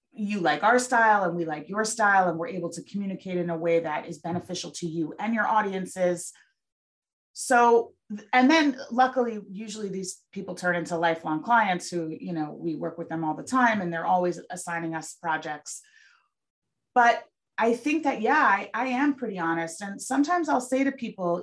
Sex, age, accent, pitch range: female, 30-49, American, 170-235 Hz